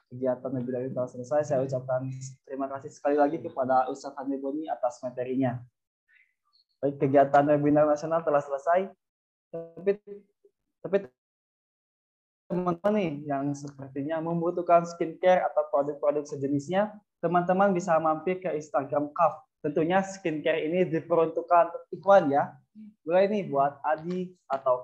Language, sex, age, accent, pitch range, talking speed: Indonesian, male, 20-39, native, 140-180 Hz, 125 wpm